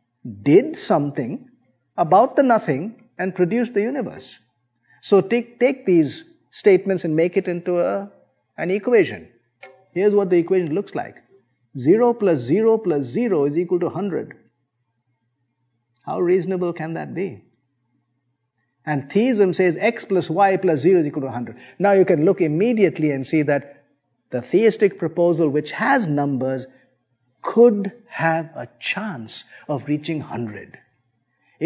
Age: 50-69